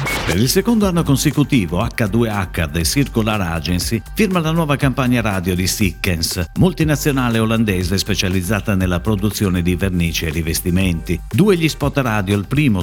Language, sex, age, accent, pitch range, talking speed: Italian, male, 50-69, native, 90-135 Hz, 145 wpm